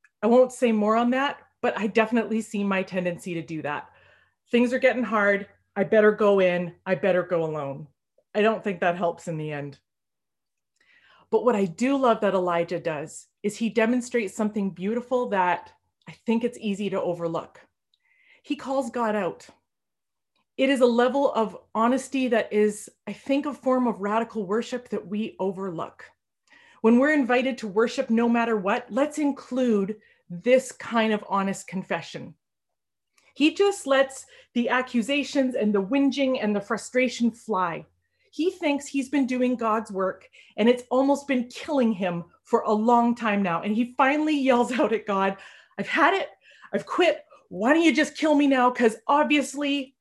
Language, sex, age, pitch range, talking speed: English, female, 30-49, 205-265 Hz, 170 wpm